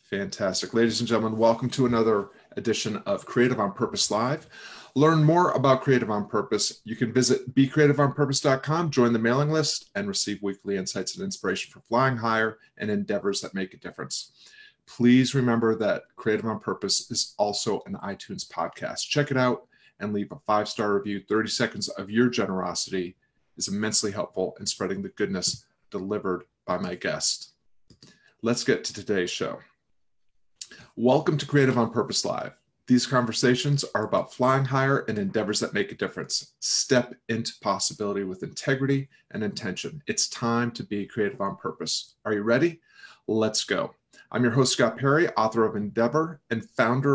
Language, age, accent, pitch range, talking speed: English, 30-49, American, 110-140 Hz, 165 wpm